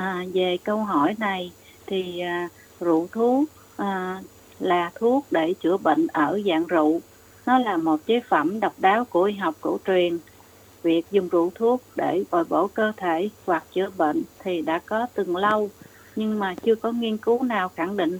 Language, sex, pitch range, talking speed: Vietnamese, female, 170-220 Hz, 185 wpm